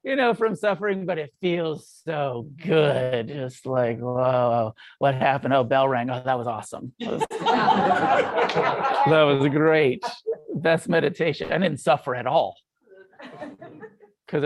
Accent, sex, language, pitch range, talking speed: American, male, English, 140-205 Hz, 145 wpm